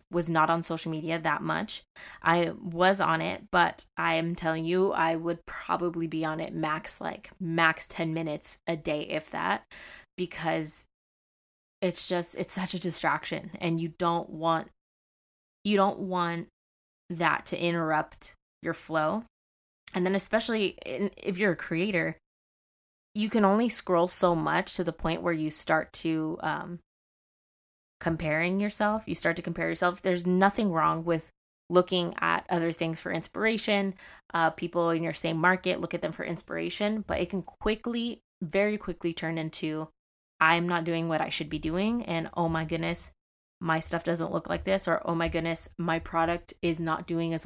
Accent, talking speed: American, 170 wpm